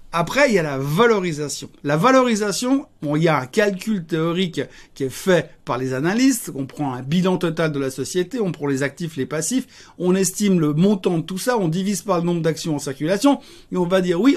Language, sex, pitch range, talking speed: French, male, 150-215 Hz, 230 wpm